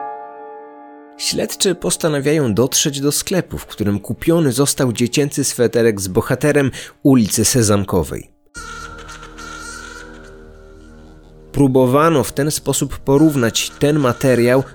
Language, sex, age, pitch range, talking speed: Polish, male, 30-49, 105-145 Hz, 90 wpm